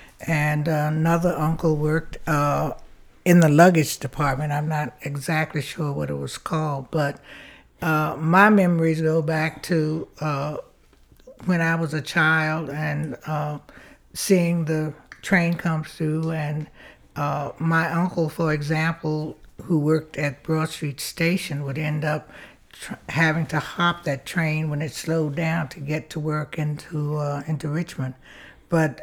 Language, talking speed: English, 145 wpm